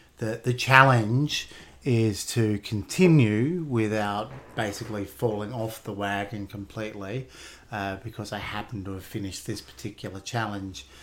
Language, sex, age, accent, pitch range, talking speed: English, male, 30-49, Australian, 100-110 Hz, 125 wpm